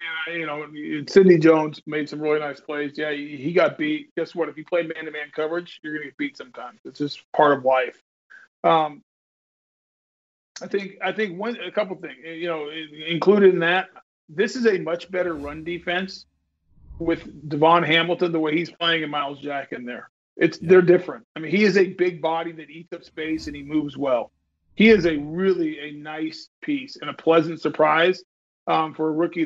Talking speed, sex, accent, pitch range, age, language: 200 wpm, male, American, 150-185 Hz, 40-59, English